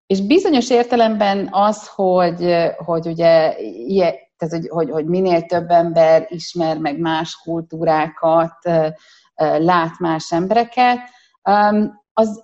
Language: Hungarian